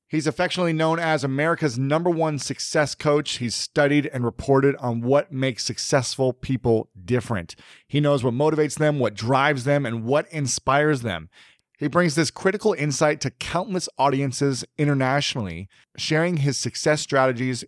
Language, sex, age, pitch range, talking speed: English, male, 30-49, 120-150 Hz, 150 wpm